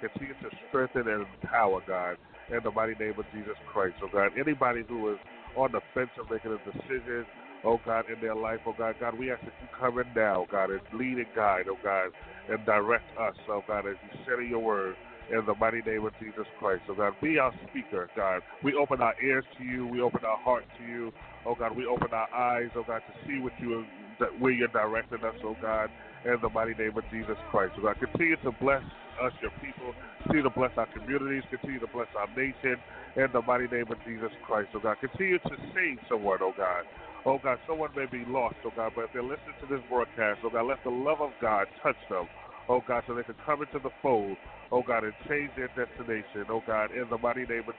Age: 30-49